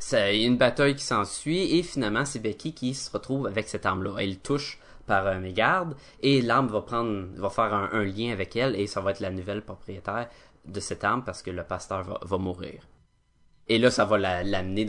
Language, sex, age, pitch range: French, male, 20-39, 100-125 Hz